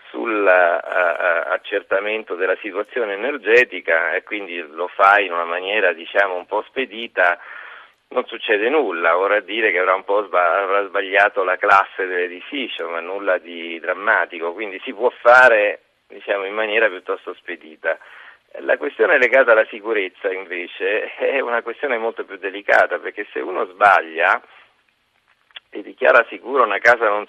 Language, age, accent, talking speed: Italian, 40-59, native, 145 wpm